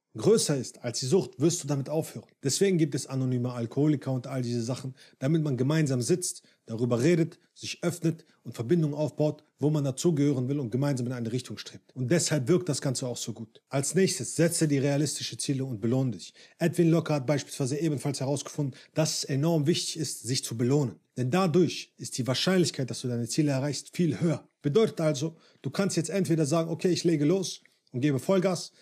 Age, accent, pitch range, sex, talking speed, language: 40-59, German, 130-175 Hz, male, 200 wpm, German